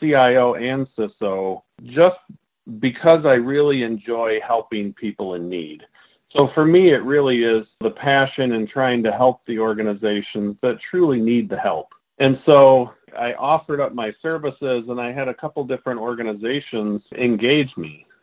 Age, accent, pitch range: 40-59, American, 110-135 Hz